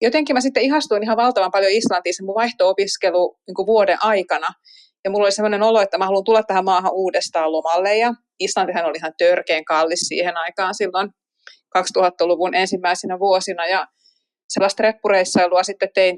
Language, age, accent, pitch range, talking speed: Finnish, 30-49, native, 180-220 Hz, 165 wpm